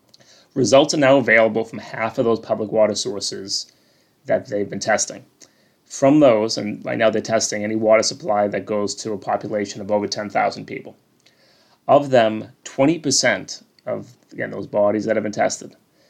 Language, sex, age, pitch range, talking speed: English, male, 30-49, 105-125 Hz, 170 wpm